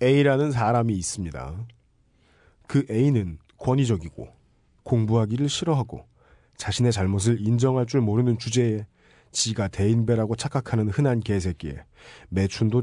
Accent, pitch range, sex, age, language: native, 95-135 Hz, male, 40-59, Korean